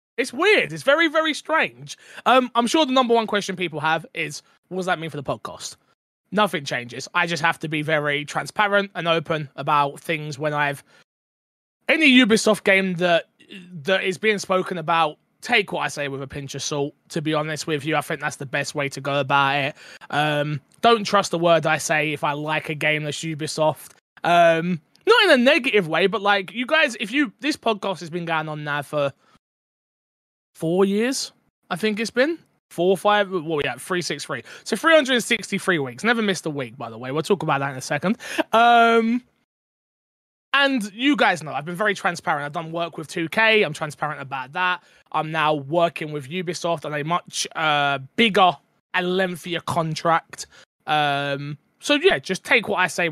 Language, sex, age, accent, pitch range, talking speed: English, male, 20-39, British, 150-210 Hz, 200 wpm